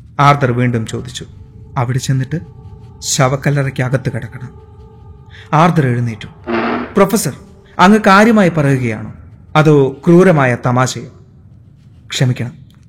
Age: 30-49